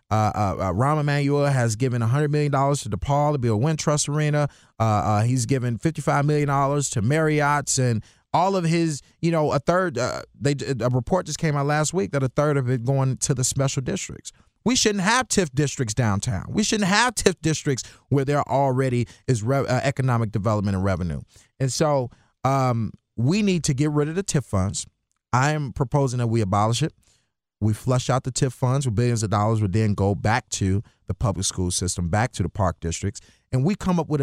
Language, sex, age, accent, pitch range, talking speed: English, male, 30-49, American, 105-145 Hz, 210 wpm